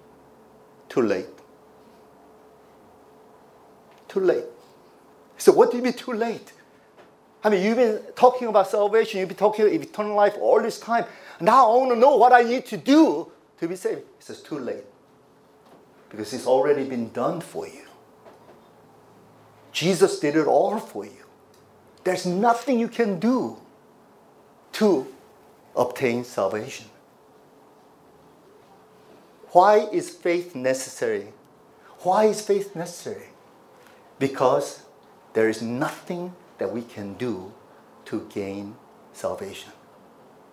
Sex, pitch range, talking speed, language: male, 145-235 Hz, 125 wpm, English